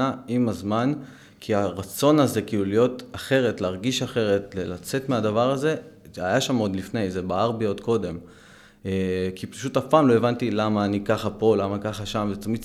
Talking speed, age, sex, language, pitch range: 180 wpm, 20-39, male, Hebrew, 95-115 Hz